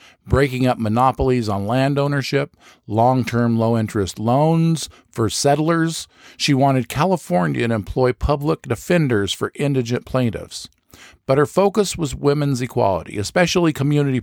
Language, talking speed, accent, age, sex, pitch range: English, 120 wpm, American, 50-69, male, 110-145 Hz